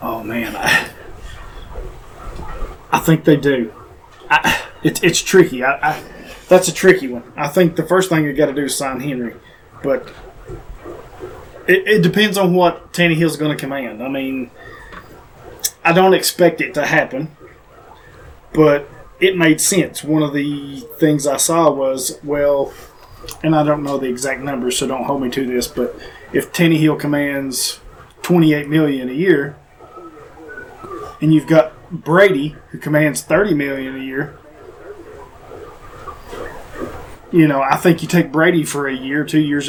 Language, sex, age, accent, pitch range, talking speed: English, male, 20-39, American, 140-170 Hz, 155 wpm